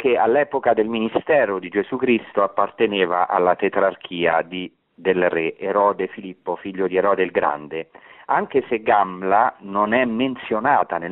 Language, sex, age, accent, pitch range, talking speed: Italian, male, 40-59, native, 95-120 Hz, 145 wpm